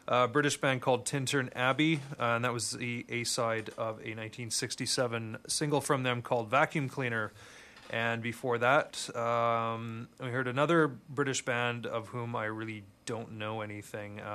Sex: male